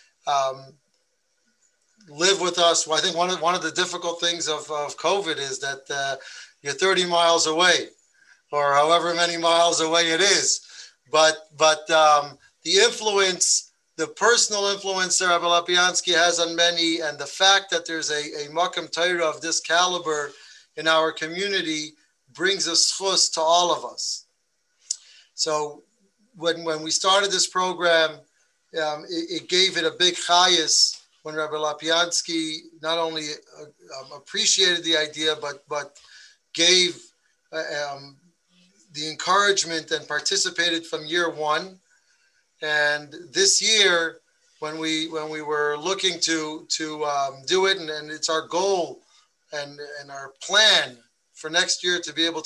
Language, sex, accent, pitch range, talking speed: English, male, American, 155-185 Hz, 150 wpm